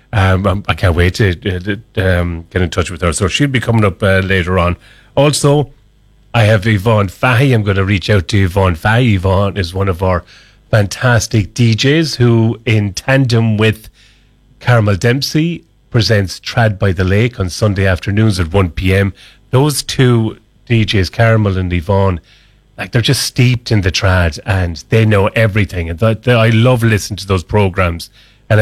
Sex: male